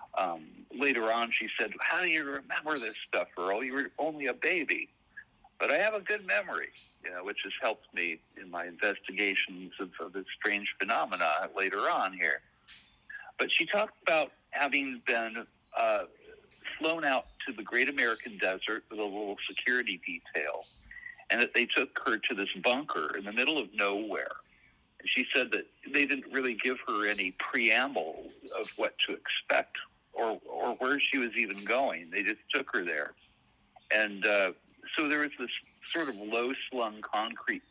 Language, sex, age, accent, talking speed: English, male, 60-79, American, 175 wpm